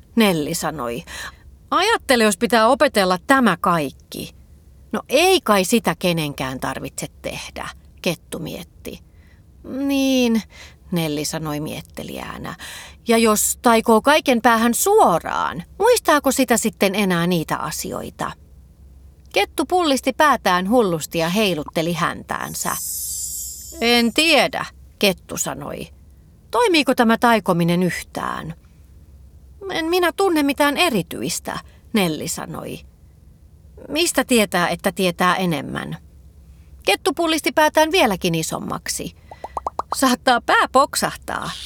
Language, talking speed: Finnish, 95 wpm